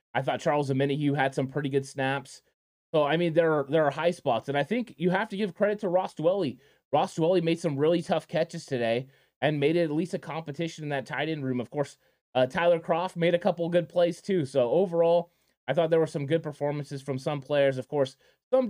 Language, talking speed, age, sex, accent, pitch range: English, 245 wpm, 20-39, male, American, 140-170 Hz